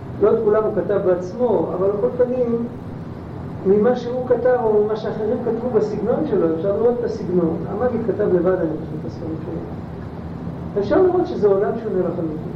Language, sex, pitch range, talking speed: Hebrew, male, 180-245 Hz, 165 wpm